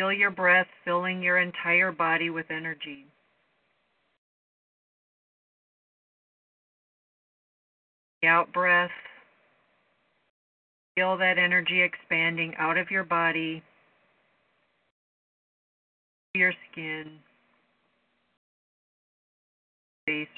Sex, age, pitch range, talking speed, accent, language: female, 40-59, 160-185 Hz, 70 wpm, American, English